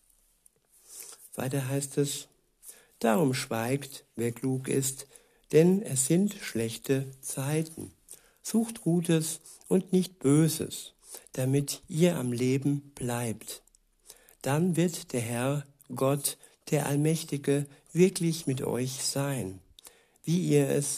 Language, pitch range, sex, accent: German, 130-155 Hz, male, German